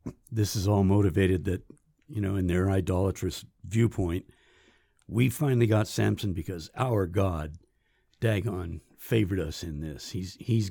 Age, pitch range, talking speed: 60-79, 90-110 Hz, 140 wpm